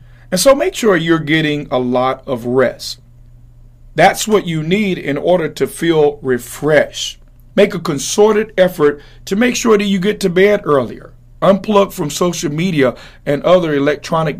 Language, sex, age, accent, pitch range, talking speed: English, male, 40-59, American, 135-180 Hz, 165 wpm